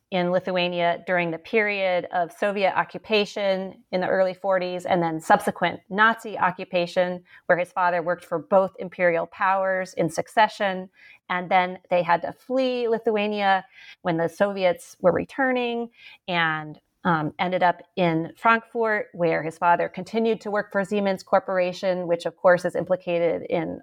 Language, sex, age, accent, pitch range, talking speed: English, female, 30-49, American, 165-190 Hz, 150 wpm